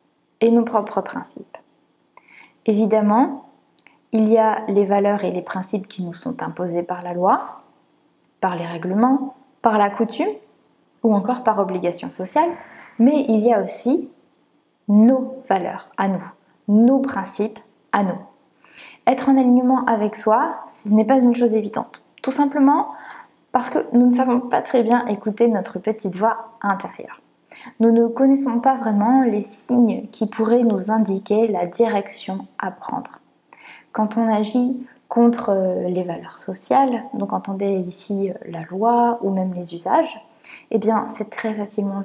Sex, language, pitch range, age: female, French, 200-245 Hz, 20-39